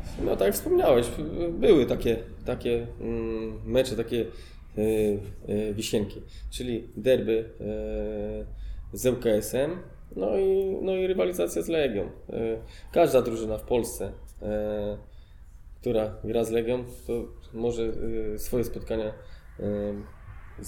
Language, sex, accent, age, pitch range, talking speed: Polish, male, native, 20-39, 105-120 Hz, 120 wpm